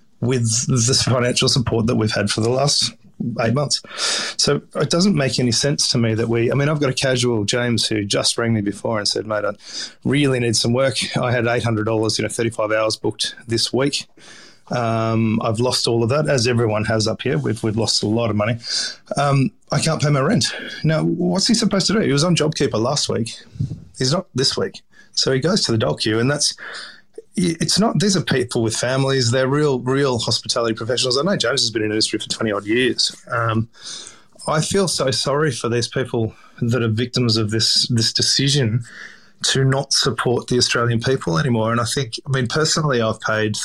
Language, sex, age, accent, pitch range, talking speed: English, male, 30-49, Australian, 115-135 Hz, 215 wpm